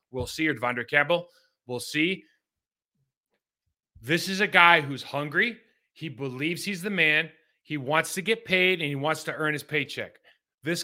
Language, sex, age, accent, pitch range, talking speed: English, male, 30-49, American, 145-180 Hz, 170 wpm